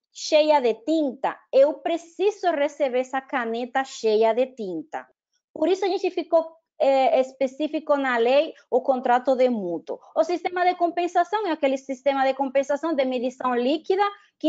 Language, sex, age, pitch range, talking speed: Portuguese, female, 30-49, 250-345 Hz, 155 wpm